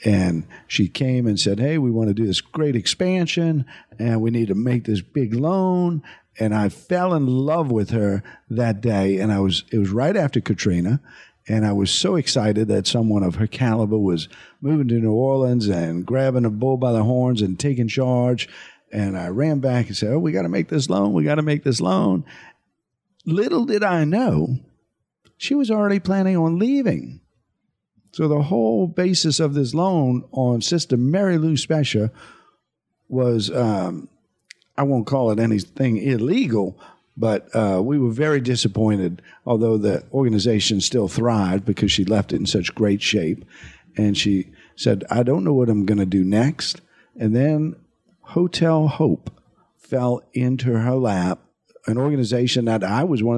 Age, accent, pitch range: 50-69, American, 105-145 Hz